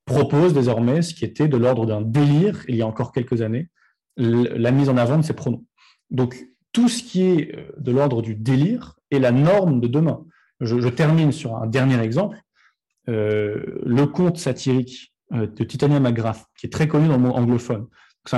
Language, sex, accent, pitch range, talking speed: French, male, French, 120-150 Hz, 195 wpm